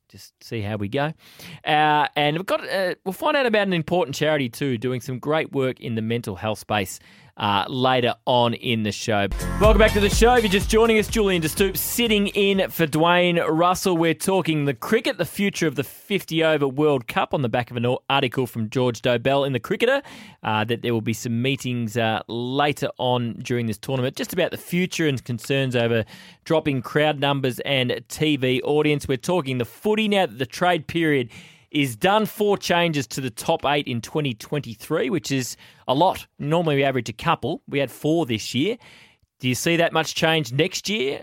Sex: male